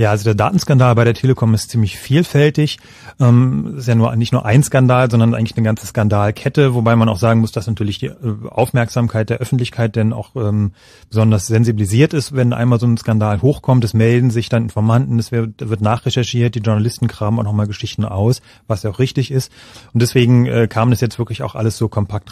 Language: German